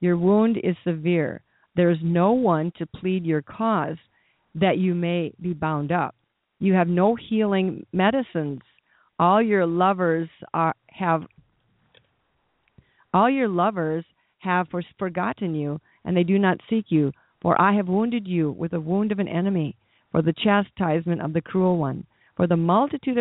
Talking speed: 160 wpm